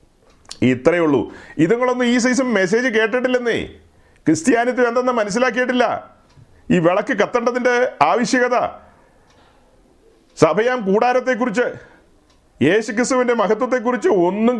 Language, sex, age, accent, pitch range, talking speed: Malayalam, male, 40-59, native, 210-245 Hz, 80 wpm